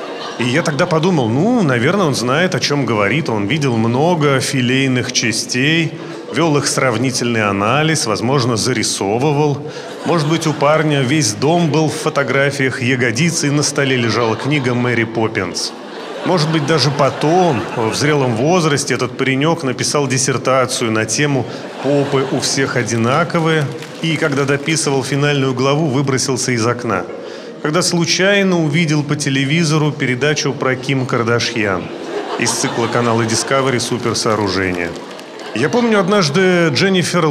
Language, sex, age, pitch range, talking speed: Russian, male, 30-49, 120-155 Hz, 130 wpm